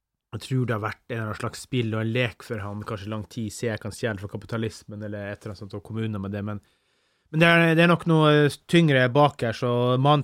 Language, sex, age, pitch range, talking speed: English, male, 30-49, 100-125 Hz, 235 wpm